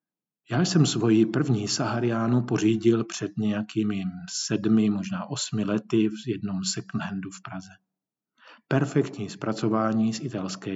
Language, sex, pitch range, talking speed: Czech, male, 105-125 Hz, 125 wpm